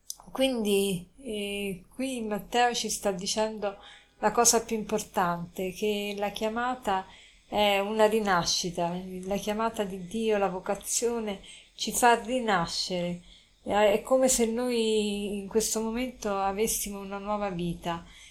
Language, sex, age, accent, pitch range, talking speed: Italian, female, 20-39, native, 195-220 Hz, 120 wpm